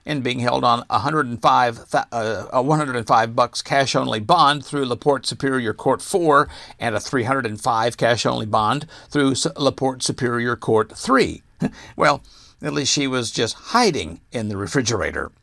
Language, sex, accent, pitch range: English, male, American, 125-165 Hz